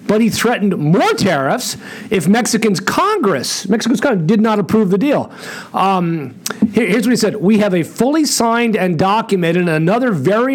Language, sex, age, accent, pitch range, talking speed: English, male, 40-59, American, 175-220 Hz, 170 wpm